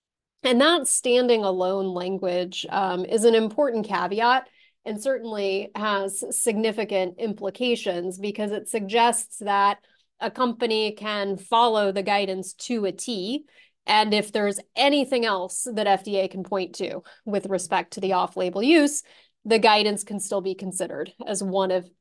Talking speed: 145 wpm